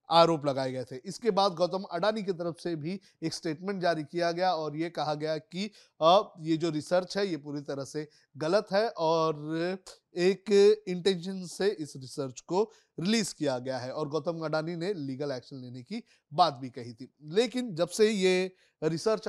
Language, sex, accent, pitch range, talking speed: Hindi, male, native, 155-190 Hz, 190 wpm